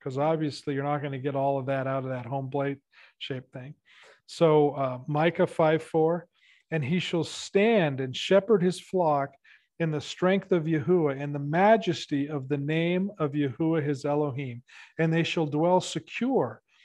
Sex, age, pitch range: male, 40-59, 140-170 Hz